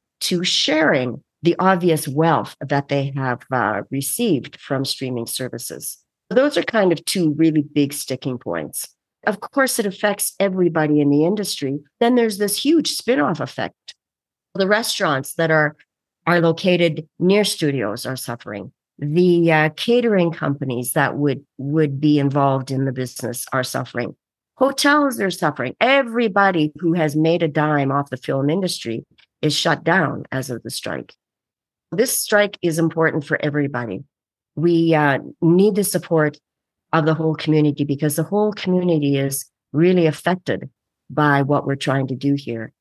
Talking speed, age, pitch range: 155 wpm, 50-69, 140-185 Hz